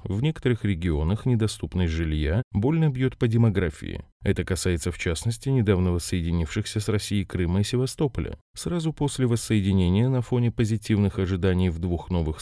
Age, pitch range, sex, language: 30-49, 90-120 Hz, male, Russian